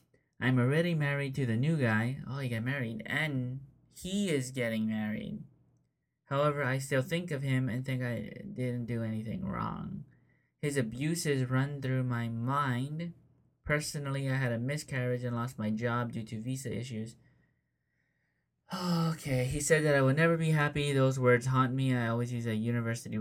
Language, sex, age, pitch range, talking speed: English, male, 20-39, 115-140 Hz, 175 wpm